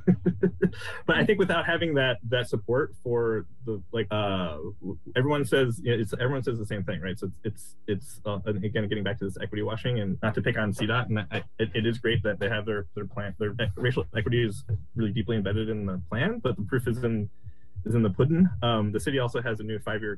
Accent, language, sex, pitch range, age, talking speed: American, English, male, 95-115 Hz, 20-39, 240 wpm